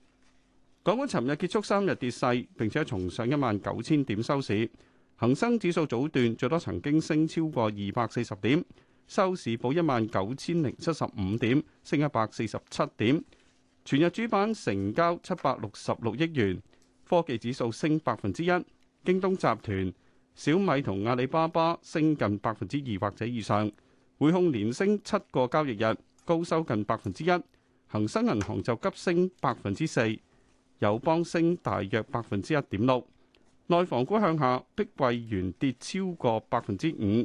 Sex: male